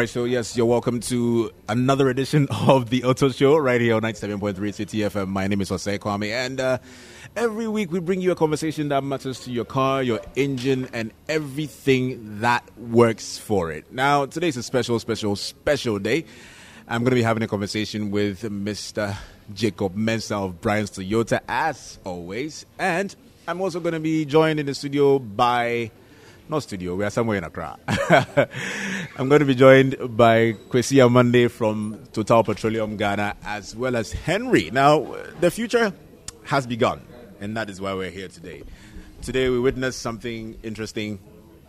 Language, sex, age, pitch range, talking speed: English, male, 30-49, 100-130 Hz, 170 wpm